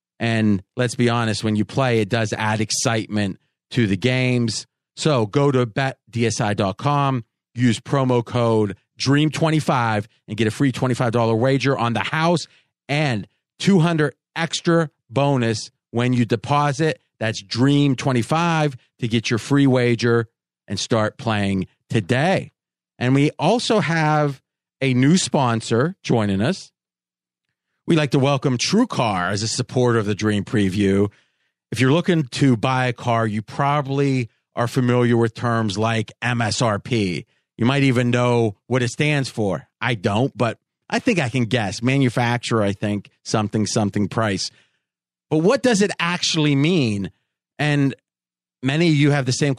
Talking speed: 145 wpm